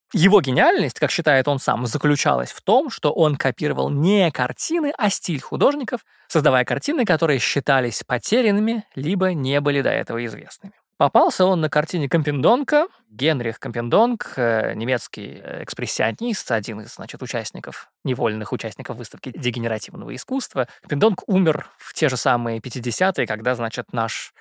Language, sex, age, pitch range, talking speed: Russian, male, 20-39, 125-195 Hz, 140 wpm